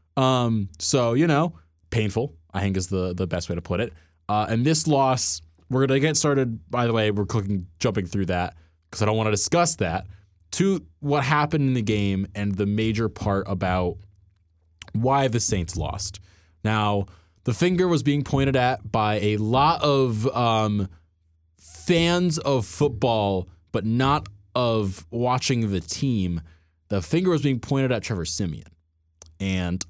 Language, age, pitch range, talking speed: English, 20-39, 90-135 Hz, 170 wpm